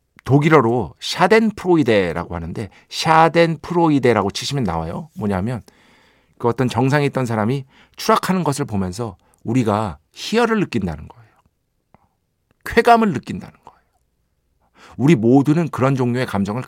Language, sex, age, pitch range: Korean, male, 50-69, 100-145 Hz